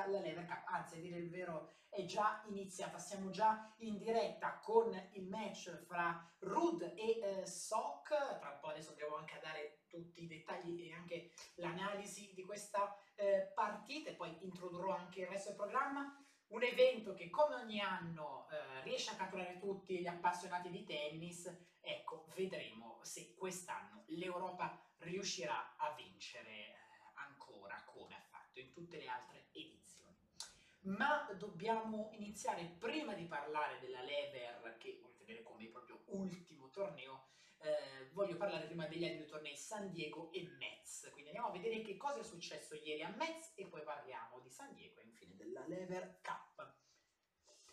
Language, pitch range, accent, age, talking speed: Italian, 165-210 Hz, native, 30-49, 160 wpm